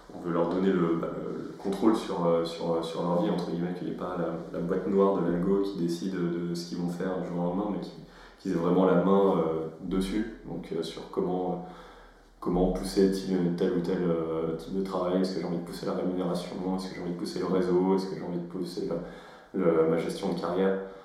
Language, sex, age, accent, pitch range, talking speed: French, male, 20-39, French, 85-95 Hz, 240 wpm